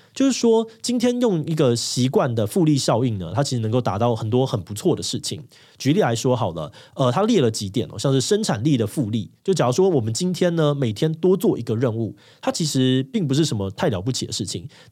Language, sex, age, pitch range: Chinese, male, 20-39, 115-155 Hz